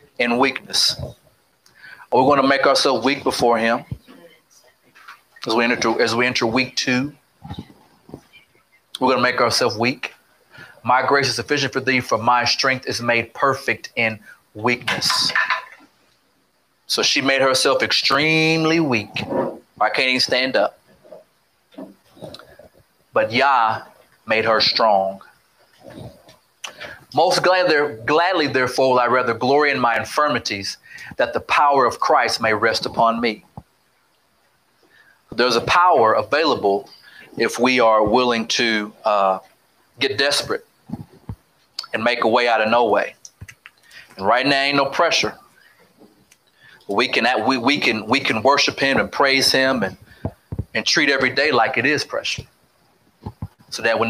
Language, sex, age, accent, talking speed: English, male, 30-49, American, 135 wpm